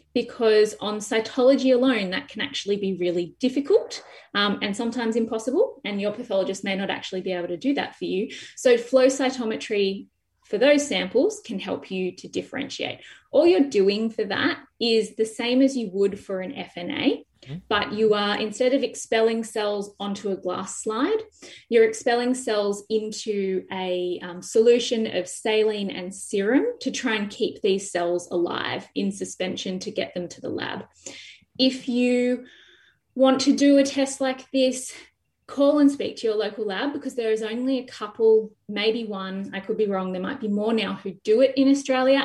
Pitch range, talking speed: 200-260 Hz, 180 wpm